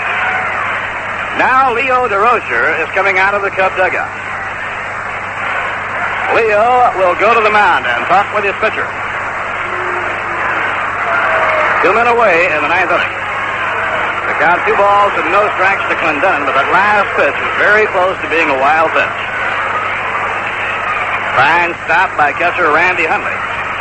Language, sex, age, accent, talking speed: English, male, 60-79, American, 140 wpm